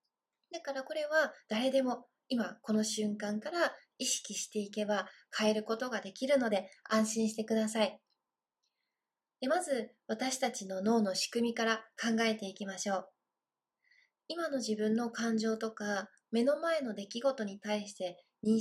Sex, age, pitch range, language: female, 20-39, 210-280 Hz, Japanese